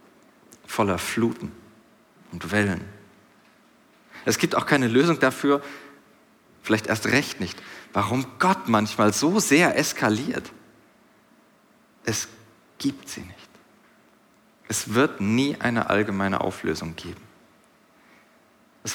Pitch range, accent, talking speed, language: 100-120 Hz, German, 100 wpm, German